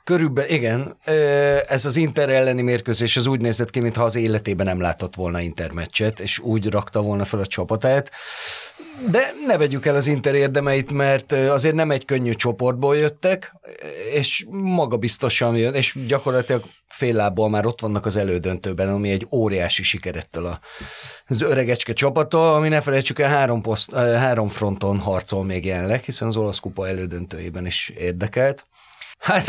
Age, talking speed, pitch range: 30-49, 155 wpm, 110-140 Hz